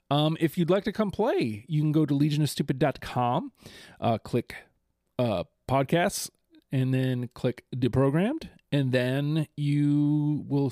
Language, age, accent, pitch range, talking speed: English, 30-49, American, 130-170 Hz, 130 wpm